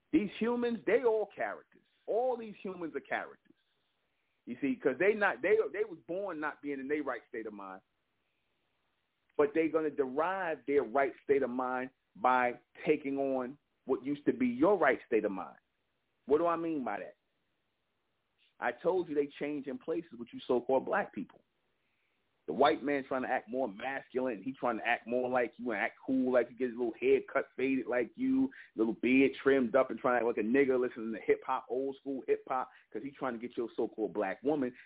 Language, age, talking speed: English, 30-49, 210 wpm